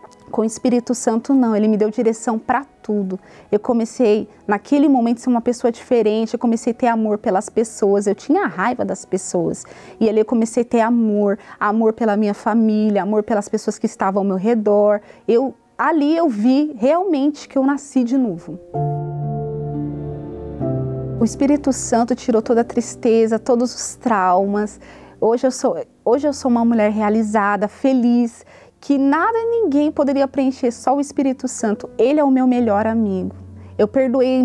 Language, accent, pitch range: Portuguese, Brazilian, 215-270 Hz